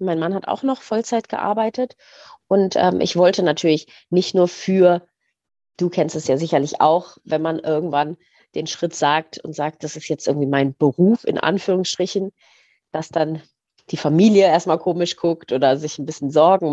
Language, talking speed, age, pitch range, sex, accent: German, 175 wpm, 30-49, 160-195 Hz, female, German